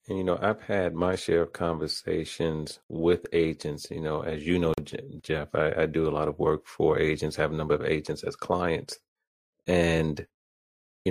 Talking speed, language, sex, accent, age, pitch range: 190 wpm, English, male, American, 30-49, 80-90 Hz